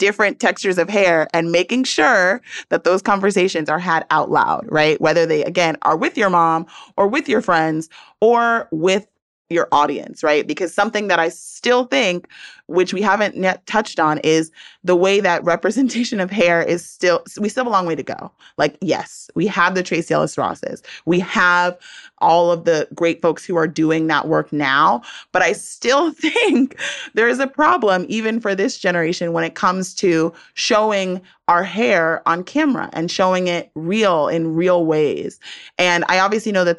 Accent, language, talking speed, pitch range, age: American, English, 185 wpm, 160-215 Hz, 30-49